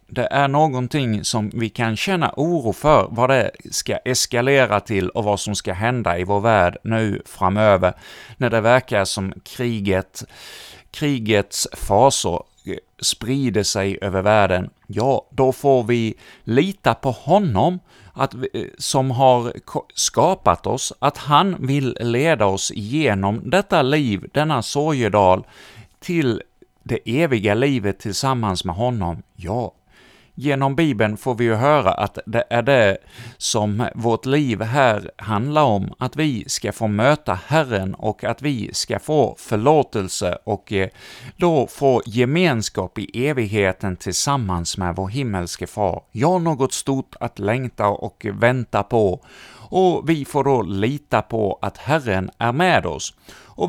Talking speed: 140 wpm